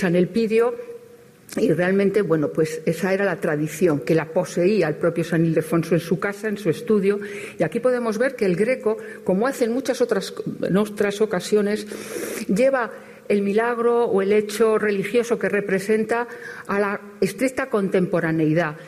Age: 50-69